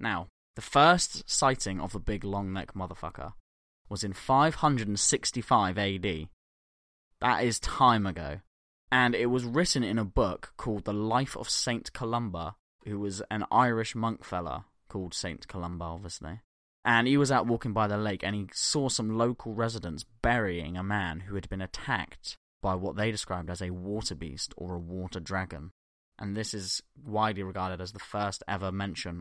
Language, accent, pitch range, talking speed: English, British, 85-110 Hz, 175 wpm